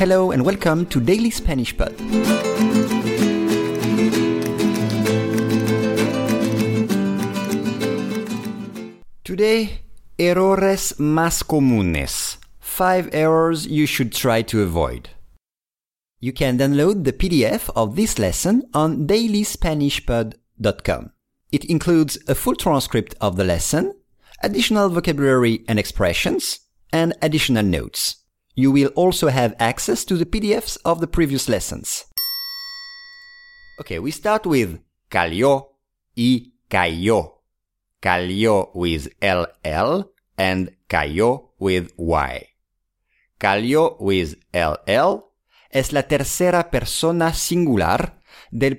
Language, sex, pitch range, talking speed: English, male, 105-175 Hz, 95 wpm